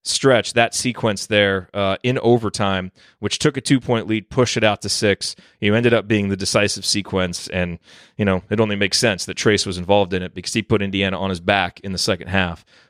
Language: English